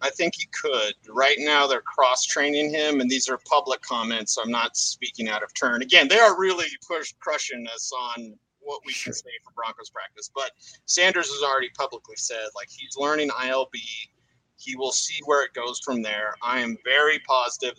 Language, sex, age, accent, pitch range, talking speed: English, male, 30-49, American, 130-215 Hz, 195 wpm